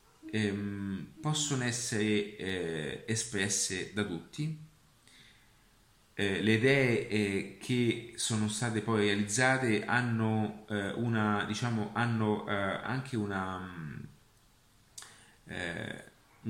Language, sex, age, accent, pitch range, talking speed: Italian, male, 30-49, native, 105-135 Hz, 95 wpm